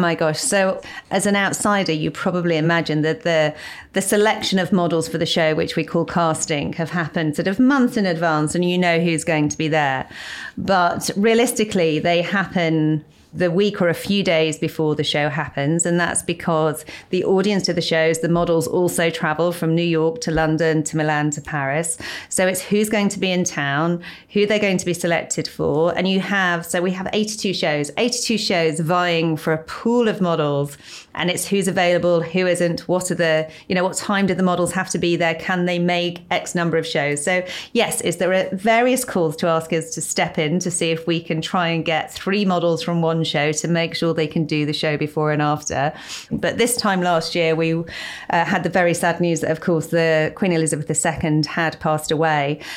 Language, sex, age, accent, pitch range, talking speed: English, female, 40-59, British, 160-185 Hz, 215 wpm